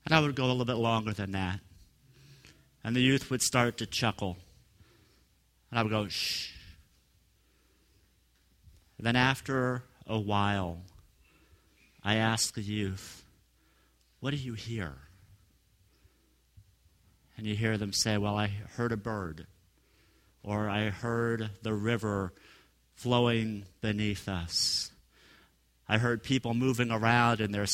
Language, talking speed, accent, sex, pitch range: English, 130 wpm, American, male, 95-125 Hz